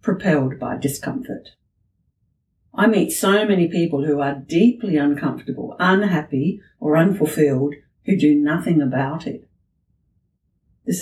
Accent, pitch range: Australian, 140-170 Hz